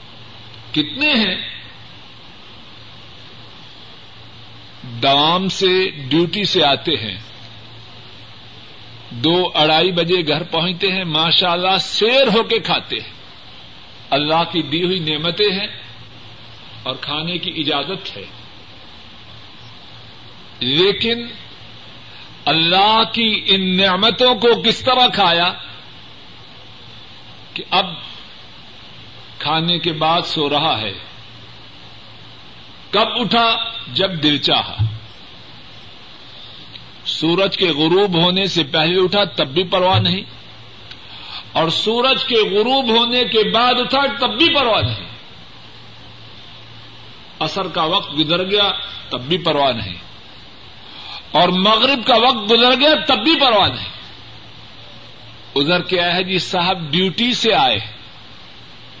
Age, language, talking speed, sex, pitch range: 50-69, Urdu, 105 wpm, male, 120-200 Hz